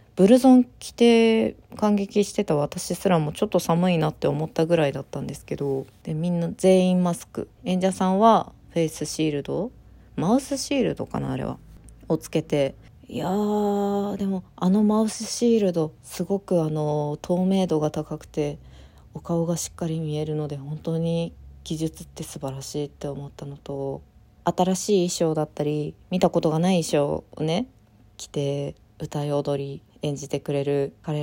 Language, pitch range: Japanese, 145-190 Hz